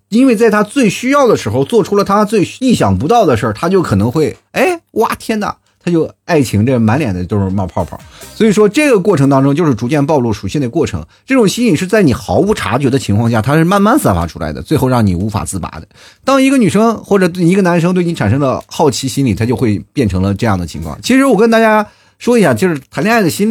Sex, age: male, 30-49